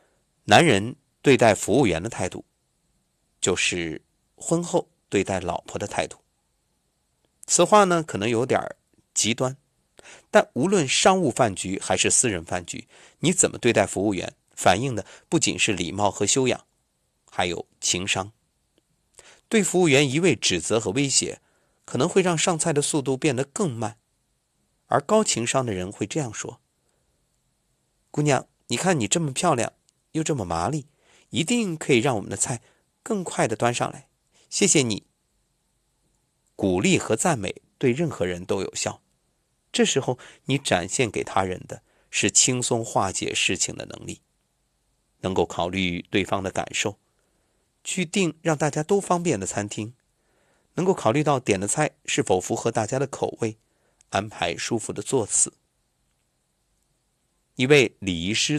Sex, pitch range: male, 105-160 Hz